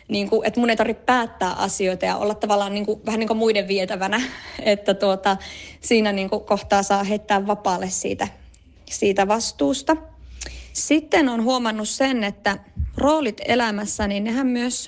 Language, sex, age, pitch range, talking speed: Finnish, female, 30-49, 200-235 Hz, 160 wpm